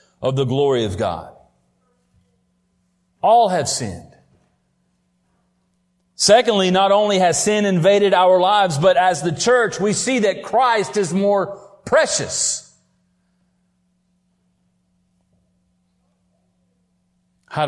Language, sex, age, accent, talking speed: English, male, 40-59, American, 95 wpm